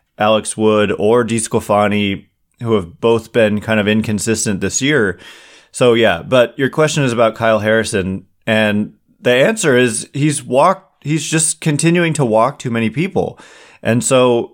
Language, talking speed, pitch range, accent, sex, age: English, 155 wpm, 105-130 Hz, American, male, 20-39